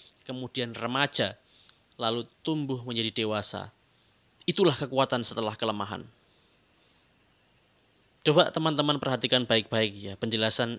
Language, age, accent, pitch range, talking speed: Indonesian, 20-39, native, 110-135 Hz, 90 wpm